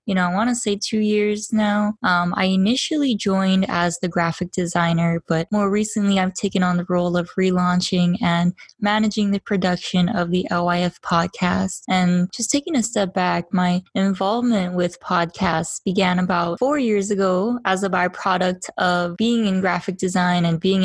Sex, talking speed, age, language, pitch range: female, 175 wpm, 20-39, English, 180-210 Hz